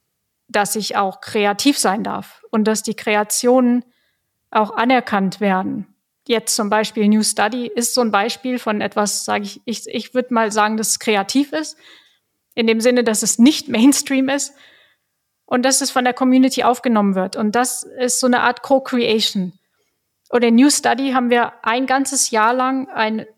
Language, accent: German, German